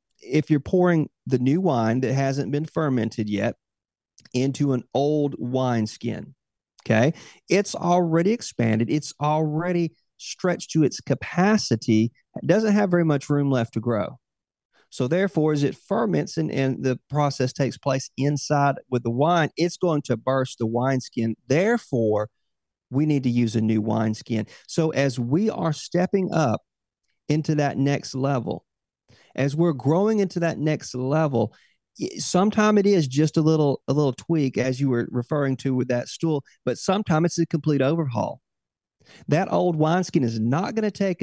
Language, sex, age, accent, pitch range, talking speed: English, male, 40-59, American, 125-165 Hz, 165 wpm